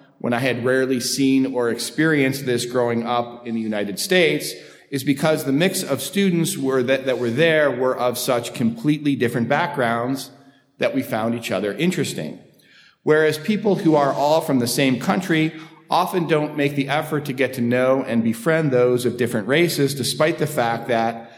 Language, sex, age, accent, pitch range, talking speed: English, male, 40-59, American, 120-155 Hz, 180 wpm